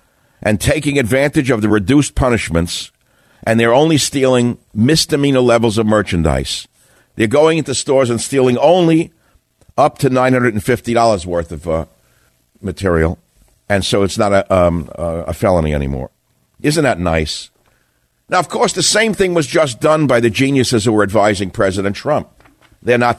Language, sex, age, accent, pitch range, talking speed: English, male, 60-79, American, 95-125 Hz, 155 wpm